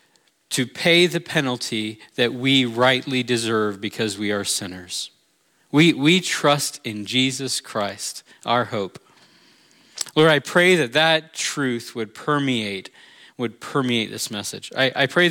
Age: 40-59